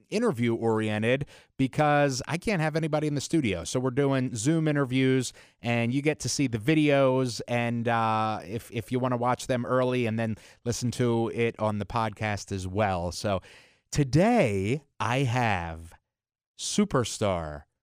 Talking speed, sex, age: 160 wpm, male, 30-49